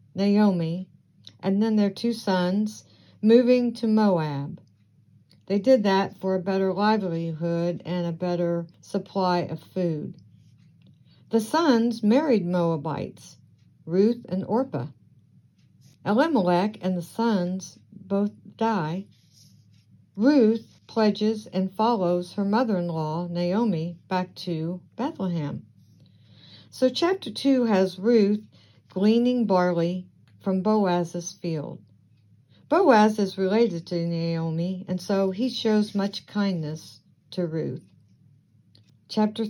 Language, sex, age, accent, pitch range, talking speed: English, female, 60-79, American, 170-215 Hz, 105 wpm